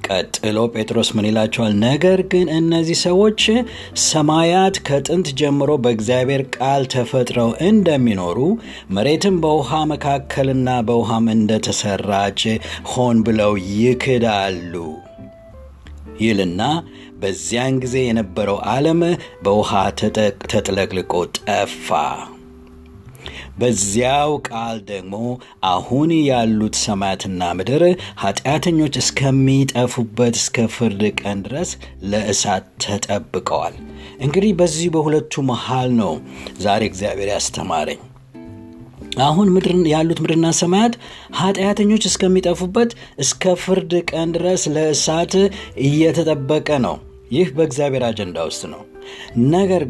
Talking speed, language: 90 wpm, Amharic